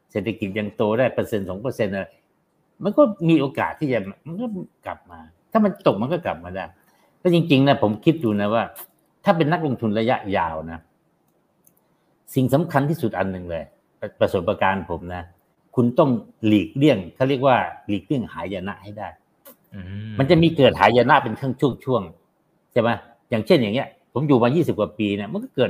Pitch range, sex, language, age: 110-170 Hz, male, Thai, 60-79